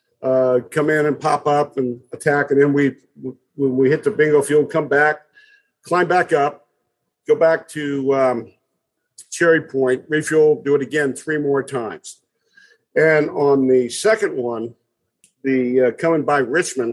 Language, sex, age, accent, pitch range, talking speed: English, male, 50-69, American, 135-200 Hz, 160 wpm